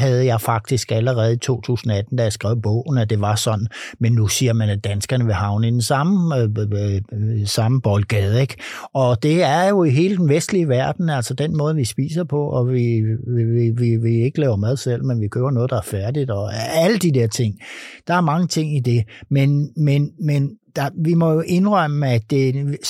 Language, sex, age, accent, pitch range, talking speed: Danish, male, 60-79, native, 115-145 Hz, 200 wpm